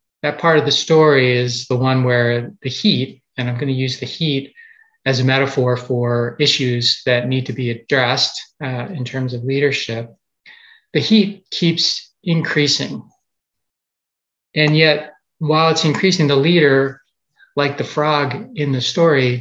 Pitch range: 125-155 Hz